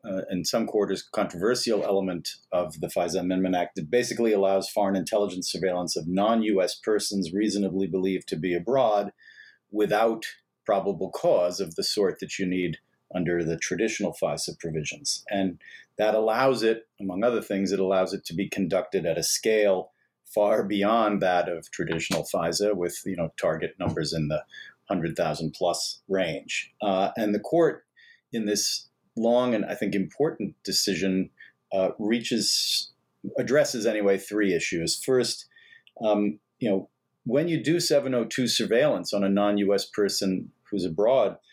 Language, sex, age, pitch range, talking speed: English, male, 50-69, 95-115 Hz, 150 wpm